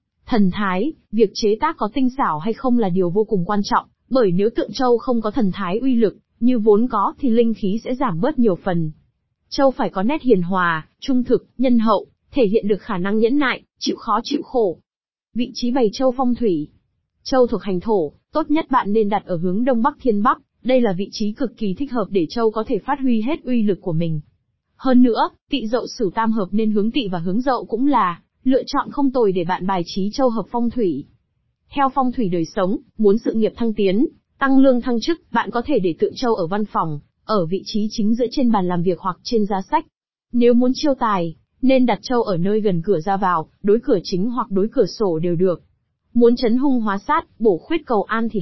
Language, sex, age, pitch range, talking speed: Vietnamese, female, 20-39, 195-255 Hz, 240 wpm